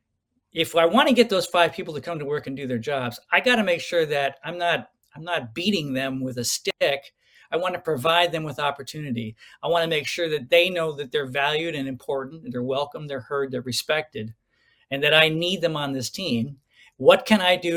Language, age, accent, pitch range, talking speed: English, 50-69, American, 130-175 Hz, 225 wpm